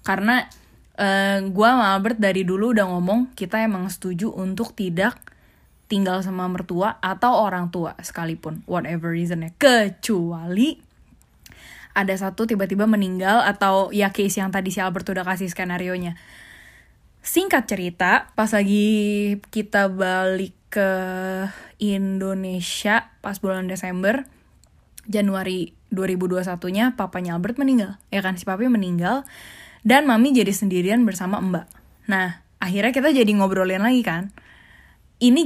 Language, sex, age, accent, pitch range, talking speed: Indonesian, female, 10-29, native, 185-220 Hz, 125 wpm